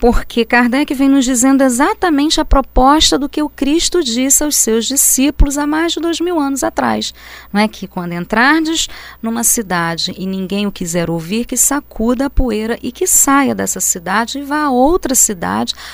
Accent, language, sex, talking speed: Brazilian, Portuguese, female, 185 wpm